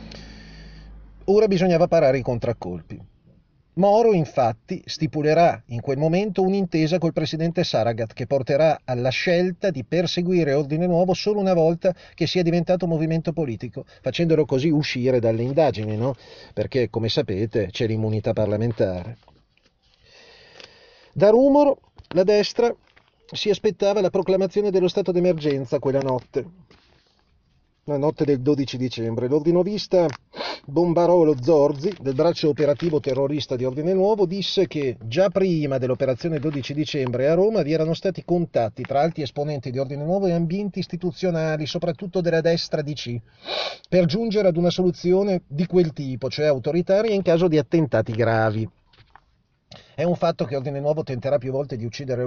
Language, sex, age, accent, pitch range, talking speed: Italian, male, 40-59, native, 130-180 Hz, 140 wpm